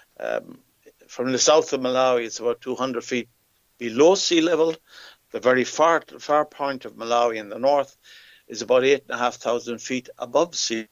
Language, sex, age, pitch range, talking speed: English, male, 60-79, 120-150 Hz, 160 wpm